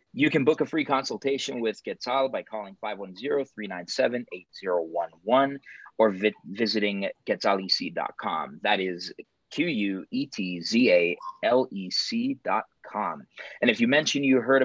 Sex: male